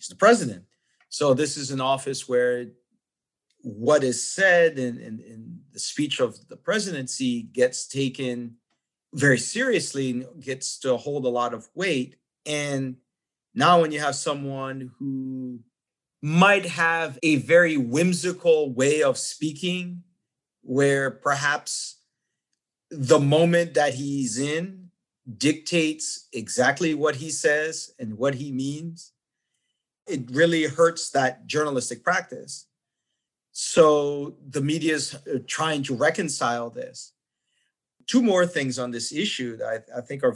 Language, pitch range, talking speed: English, 130-160 Hz, 130 wpm